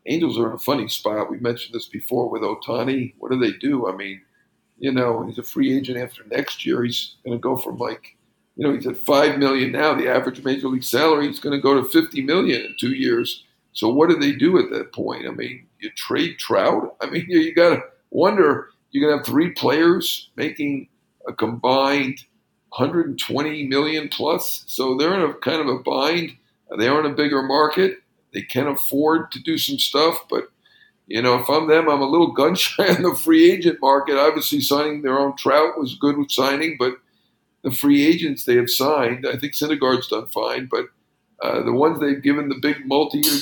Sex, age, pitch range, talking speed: male, 50-69, 130-160 Hz, 210 wpm